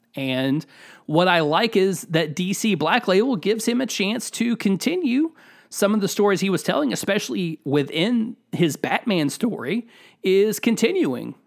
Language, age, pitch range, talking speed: English, 30-49, 160-225 Hz, 150 wpm